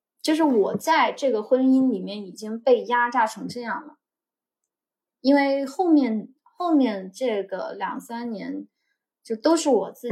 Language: Chinese